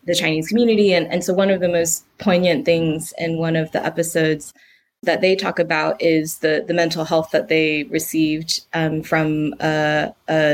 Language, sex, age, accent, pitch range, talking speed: English, female, 20-39, American, 155-175 Hz, 190 wpm